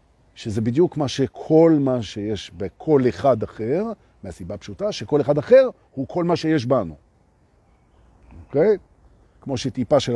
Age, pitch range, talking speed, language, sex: 50-69, 105-180 Hz, 135 wpm, Hebrew, male